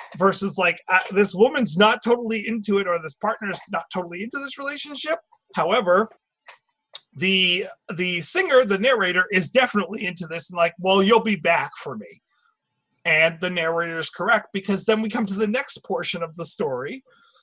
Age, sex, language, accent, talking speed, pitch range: 30-49, male, English, American, 175 wpm, 180-225 Hz